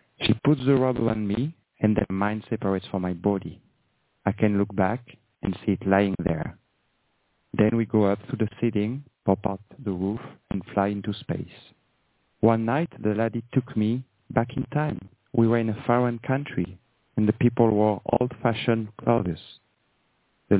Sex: male